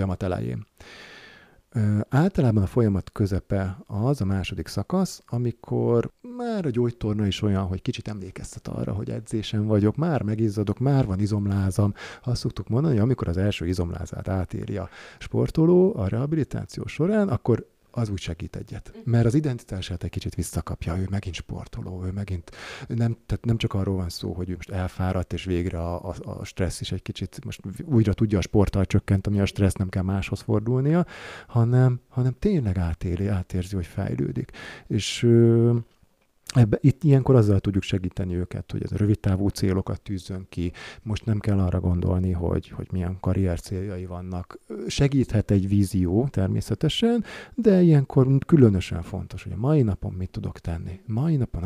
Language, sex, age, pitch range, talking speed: Hungarian, male, 50-69, 95-120 Hz, 160 wpm